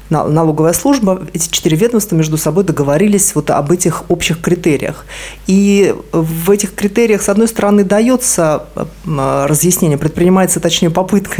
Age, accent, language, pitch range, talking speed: 20-39, native, Russian, 150-180 Hz, 130 wpm